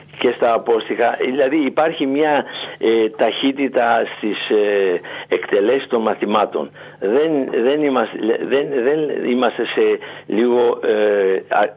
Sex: male